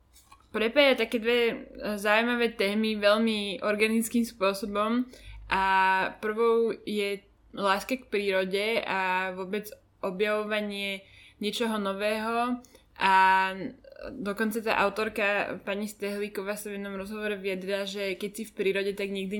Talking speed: 115 wpm